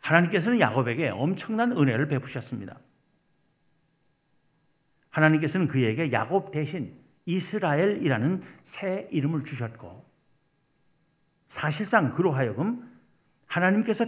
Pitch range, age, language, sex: 130-170 Hz, 50-69, Korean, male